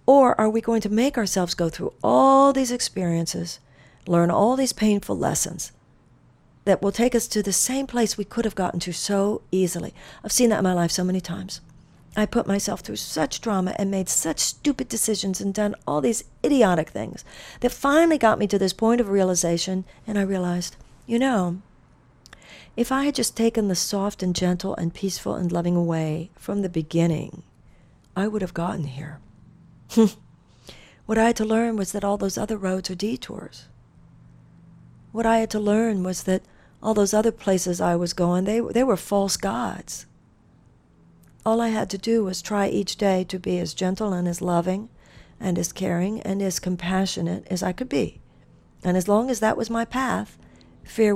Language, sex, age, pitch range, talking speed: English, female, 50-69, 175-220 Hz, 190 wpm